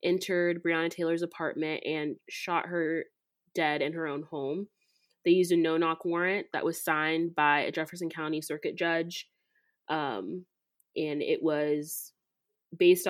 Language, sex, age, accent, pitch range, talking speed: English, female, 20-39, American, 160-190 Hz, 140 wpm